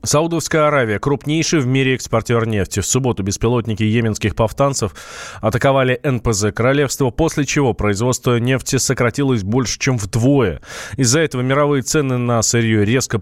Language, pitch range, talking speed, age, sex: Russian, 110-140 Hz, 135 wpm, 20-39, male